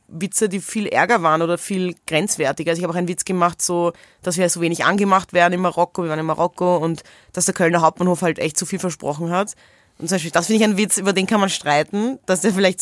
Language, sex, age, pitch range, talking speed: German, female, 20-39, 170-205 Hz, 260 wpm